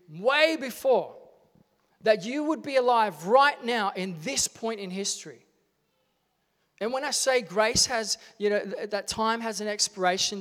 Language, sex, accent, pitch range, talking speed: English, male, Australian, 190-235 Hz, 155 wpm